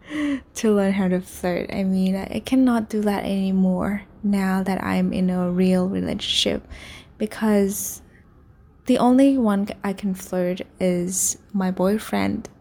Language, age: Vietnamese, 10-29